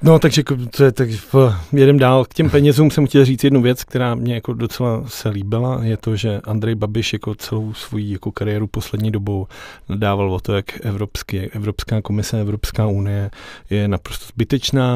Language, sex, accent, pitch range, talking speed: Czech, male, native, 110-125 Hz, 180 wpm